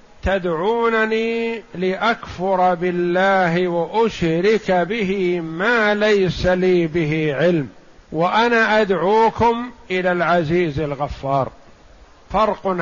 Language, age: Arabic, 50-69